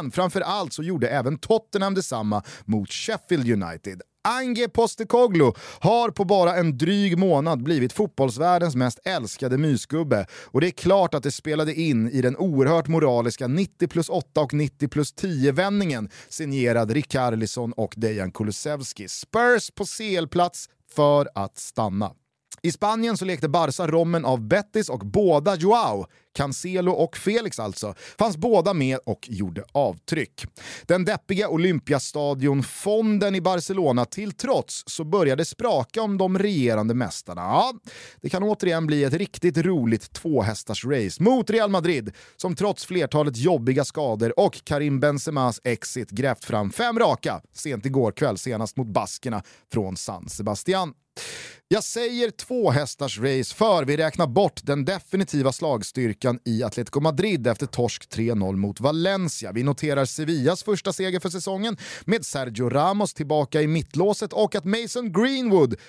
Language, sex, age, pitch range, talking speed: Swedish, male, 30-49, 125-190 Hz, 145 wpm